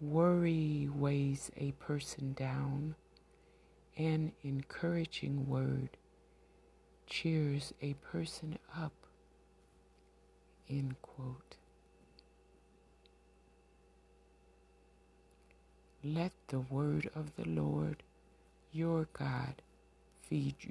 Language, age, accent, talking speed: English, 60-79, American, 60 wpm